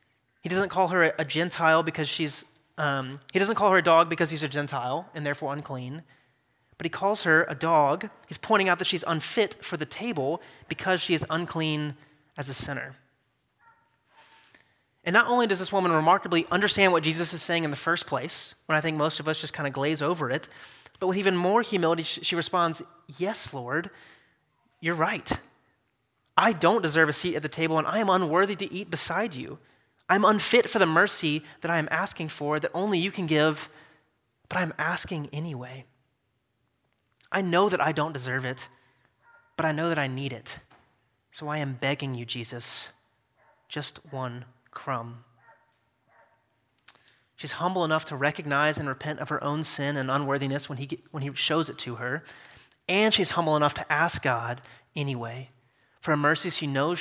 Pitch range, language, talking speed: 140-175 Hz, English, 185 wpm